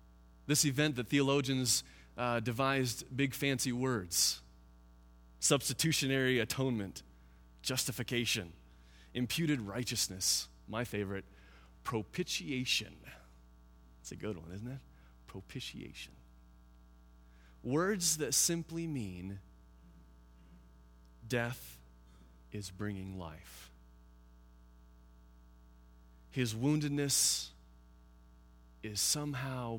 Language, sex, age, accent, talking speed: English, male, 30-49, American, 75 wpm